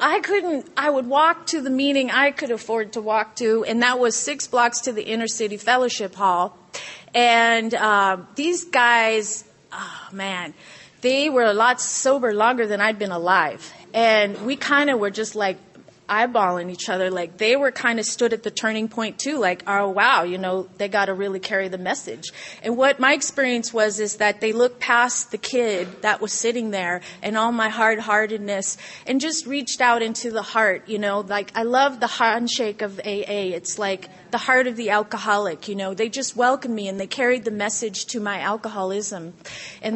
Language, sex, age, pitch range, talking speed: English, female, 30-49, 205-245 Hz, 200 wpm